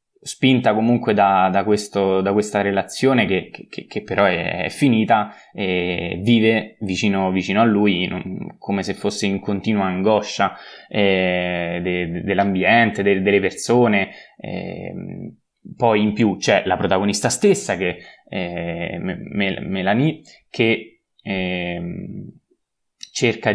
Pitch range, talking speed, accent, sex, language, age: 95-110 Hz, 125 wpm, native, male, Italian, 20-39